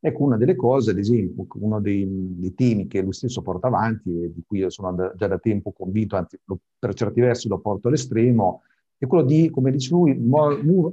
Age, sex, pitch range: 50-69, male, 100-125 Hz